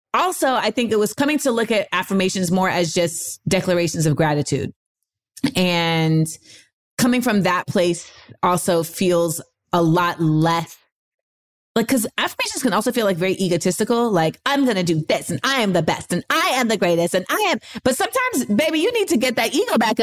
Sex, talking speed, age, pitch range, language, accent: female, 190 wpm, 30-49, 170-215 Hz, English, American